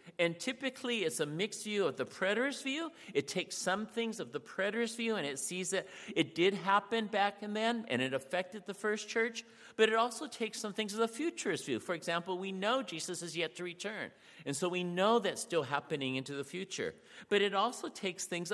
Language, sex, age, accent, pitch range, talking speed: English, male, 50-69, American, 160-225 Hz, 220 wpm